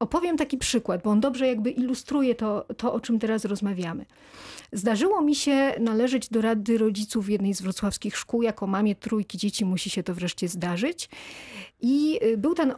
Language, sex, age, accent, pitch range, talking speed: Polish, female, 40-59, native, 210-270 Hz, 180 wpm